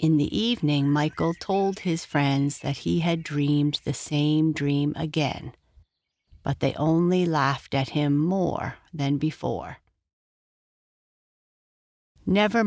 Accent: American